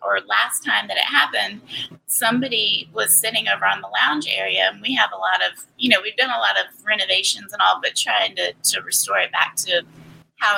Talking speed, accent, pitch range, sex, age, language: 220 wpm, American, 215-290 Hz, female, 30-49, English